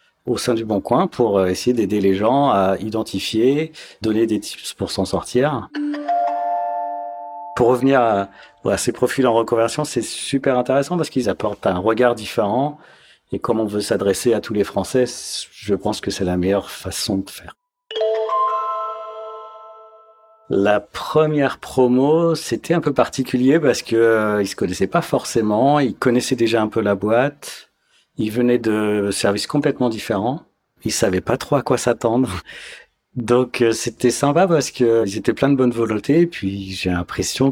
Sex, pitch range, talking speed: male, 100-130 Hz, 160 wpm